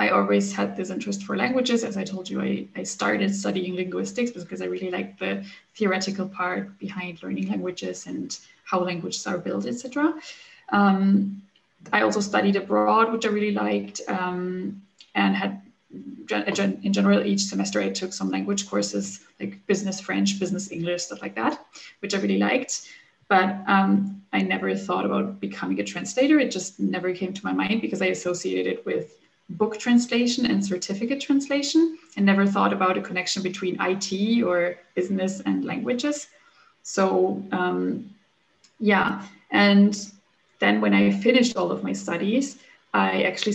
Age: 20-39